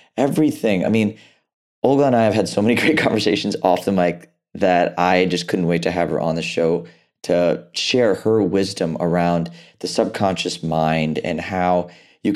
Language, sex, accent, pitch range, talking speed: English, male, American, 85-105 Hz, 180 wpm